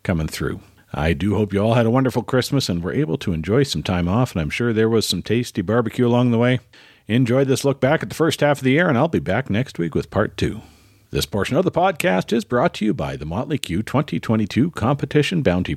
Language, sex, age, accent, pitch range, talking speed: English, male, 50-69, American, 90-130 Hz, 250 wpm